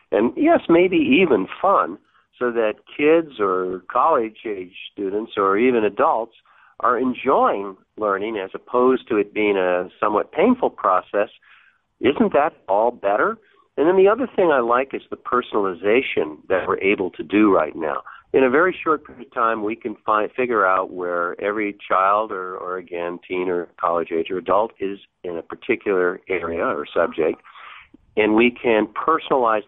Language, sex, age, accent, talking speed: English, male, 50-69, American, 160 wpm